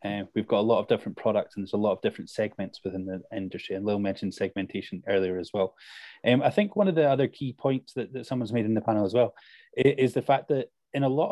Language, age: English, 20-39